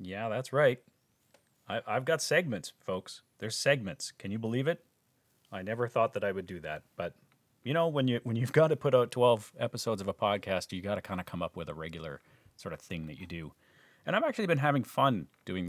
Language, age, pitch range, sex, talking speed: English, 40-59, 100-140 Hz, male, 235 wpm